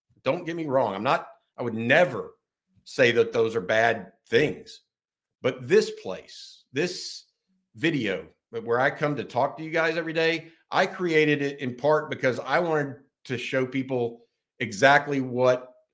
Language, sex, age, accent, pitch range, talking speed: English, male, 50-69, American, 110-155 Hz, 160 wpm